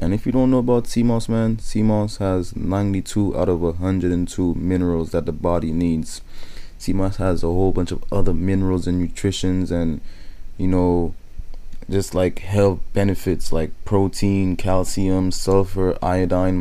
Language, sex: English, male